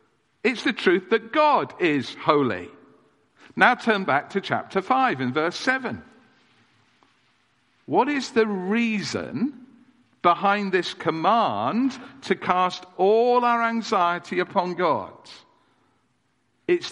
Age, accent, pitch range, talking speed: 50-69, British, 165-235 Hz, 110 wpm